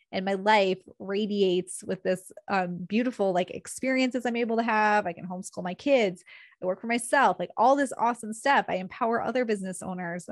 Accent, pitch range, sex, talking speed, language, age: American, 200-240 Hz, female, 190 wpm, English, 20-39